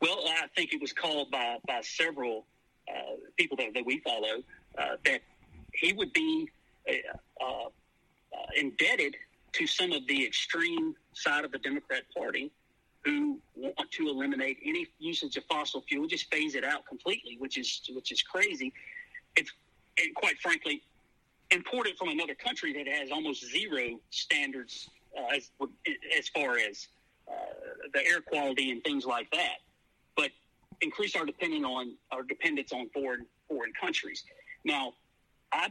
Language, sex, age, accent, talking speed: English, male, 40-59, American, 150 wpm